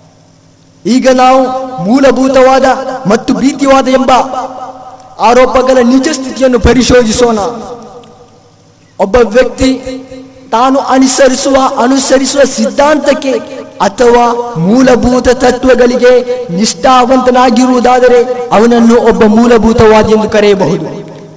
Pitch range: 240-265 Hz